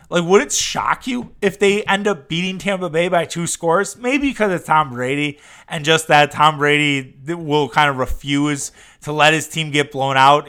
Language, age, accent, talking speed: English, 20-39, American, 205 wpm